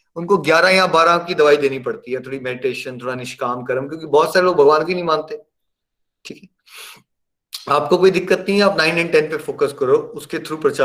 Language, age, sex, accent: Hindi, 30-49, male, native